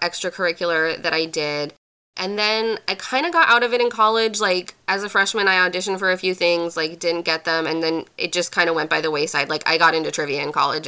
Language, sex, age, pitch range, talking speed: English, female, 20-39, 170-210 Hz, 255 wpm